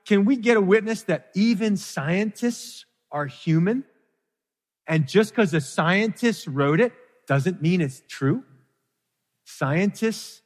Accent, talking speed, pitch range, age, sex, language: American, 125 wpm, 135-185 Hz, 40-59, male, English